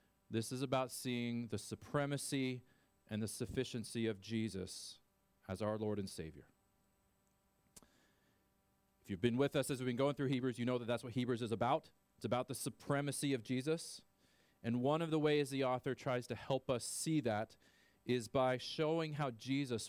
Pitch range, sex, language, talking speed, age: 110-140 Hz, male, English, 180 wpm, 40-59